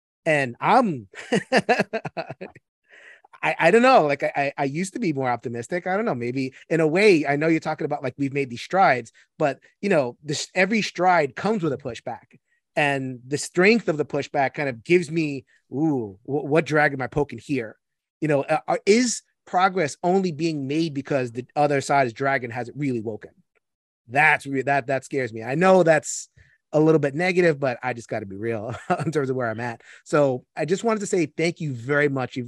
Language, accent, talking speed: English, American, 205 wpm